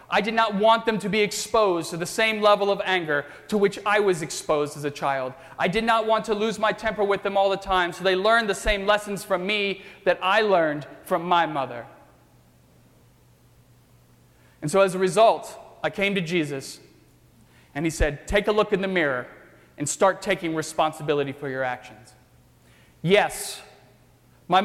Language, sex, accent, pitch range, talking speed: English, male, American, 145-200 Hz, 185 wpm